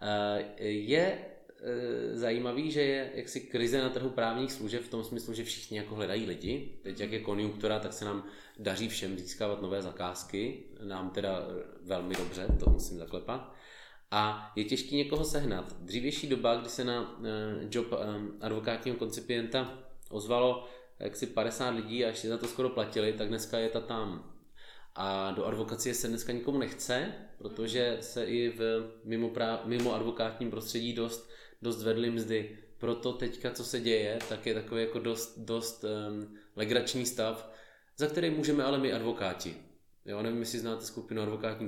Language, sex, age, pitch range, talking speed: Czech, male, 20-39, 105-120 Hz, 160 wpm